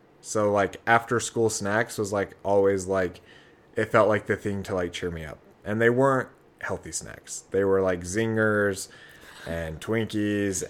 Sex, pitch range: male, 90-115 Hz